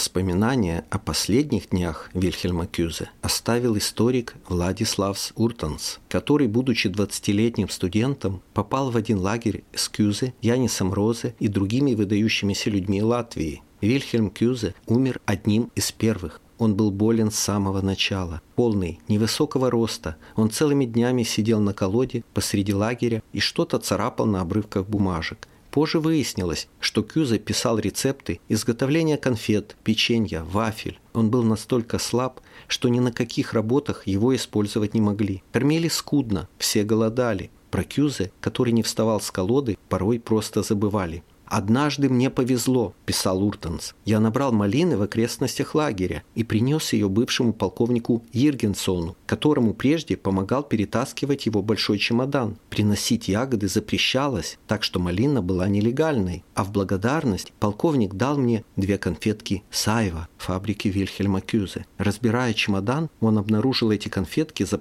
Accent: native